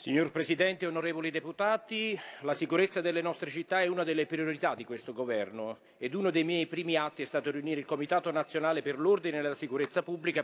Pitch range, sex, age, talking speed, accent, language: 135-165 Hz, male, 40-59, 195 wpm, native, Italian